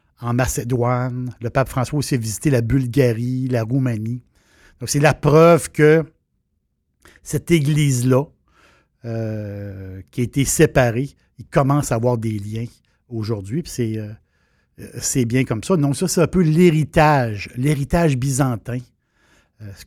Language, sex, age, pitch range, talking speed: French, male, 60-79, 110-140 Hz, 135 wpm